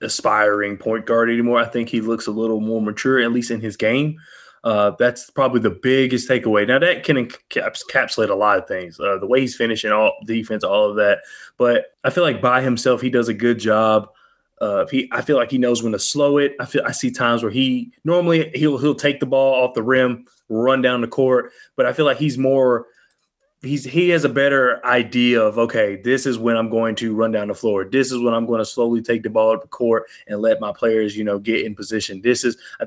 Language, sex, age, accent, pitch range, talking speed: English, male, 20-39, American, 110-135 Hz, 240 wpm